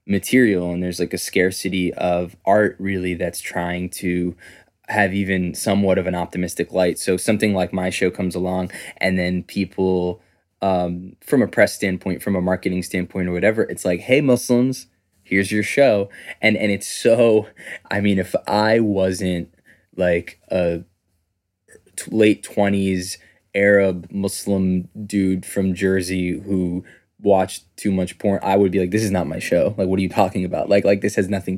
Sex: male